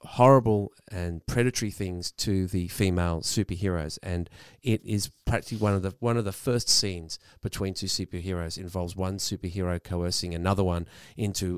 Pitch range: 90-110 Hz